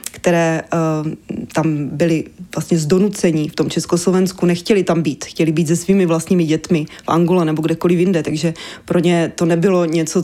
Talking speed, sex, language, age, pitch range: 170 wpm, female, Czech, 20-39, 165-185 Hz